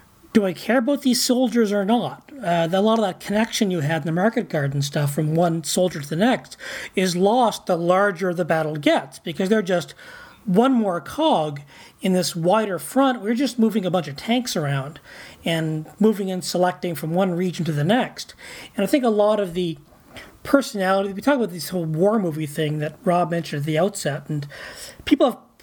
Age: 40-59